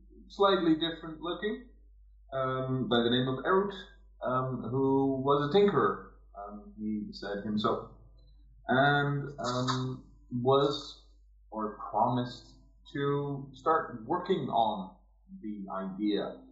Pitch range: 105-150 Hz